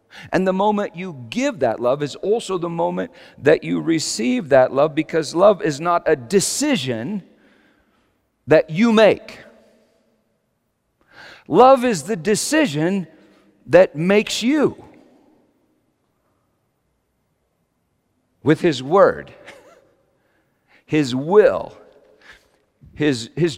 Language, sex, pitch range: English, male, 165-245 Hz